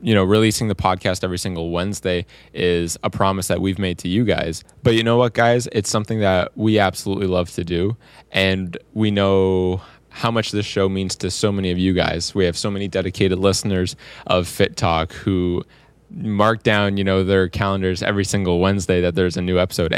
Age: 20-39